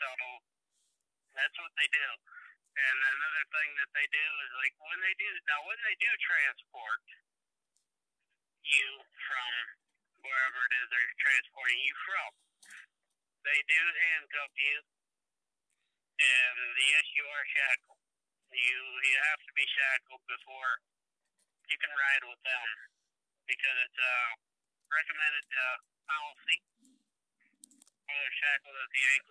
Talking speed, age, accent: 130 wpm, 50-69, American